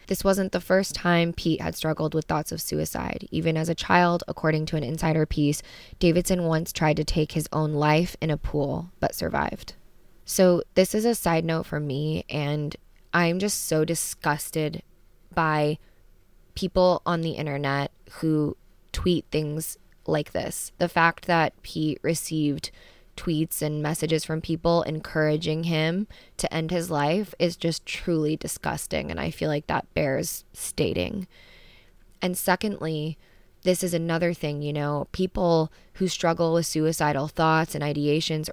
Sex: female